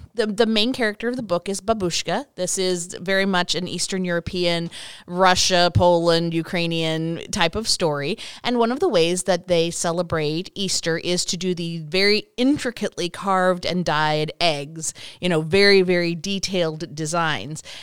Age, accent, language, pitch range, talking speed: 30-49, American, English, 155-190 Hz, 160 wpm